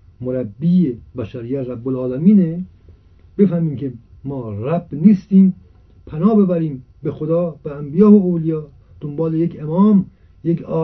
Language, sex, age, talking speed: Persian, male, 50-69, 115 wpm